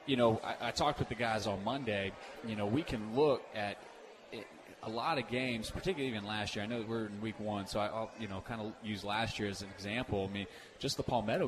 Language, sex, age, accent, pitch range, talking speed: English, male, 20-39, American, 105-125 Hz, 255 wpm